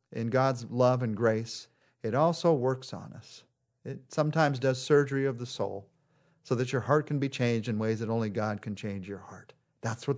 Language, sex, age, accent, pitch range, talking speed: English, male, 50-69, American, 120-170 Hz, 205 wpm